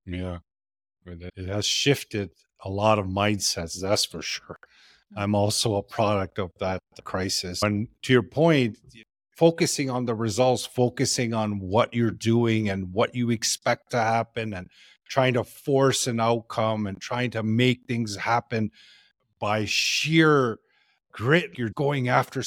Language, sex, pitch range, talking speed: English, male, 105-130 Hz, 145 wpm